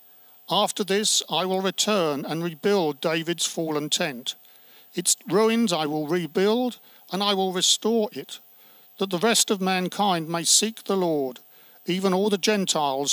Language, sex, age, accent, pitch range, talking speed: English, male, 50-69, British, 150-200 Hz, 150 wpm